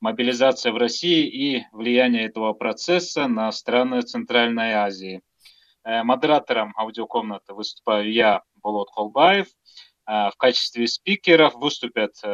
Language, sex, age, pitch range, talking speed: Russian, male, 30-49, 120-165 Hz, 100 wpm